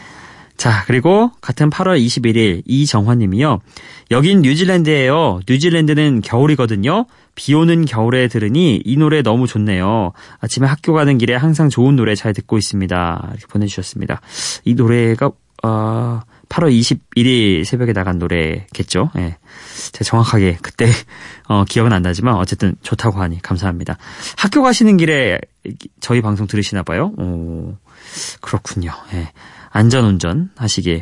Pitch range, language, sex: 100-145 Hz, Korean, male